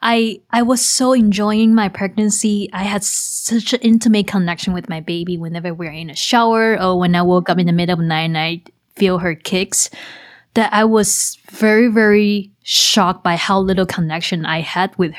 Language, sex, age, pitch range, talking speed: English, female, 20-39, 175-215 Hz, 200 wpm